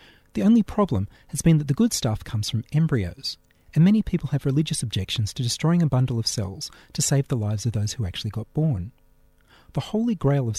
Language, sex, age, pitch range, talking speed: English, male, 40-59, 110-165 Hz, 215 wpm